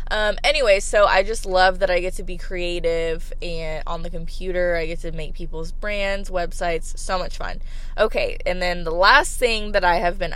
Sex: female